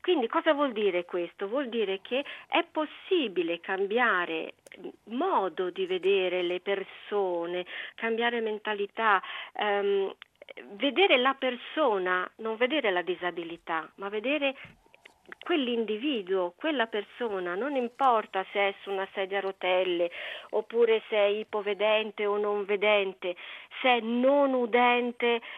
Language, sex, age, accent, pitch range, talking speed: Italian, female, 40-59, native, 195-265 Hz, 120 wpm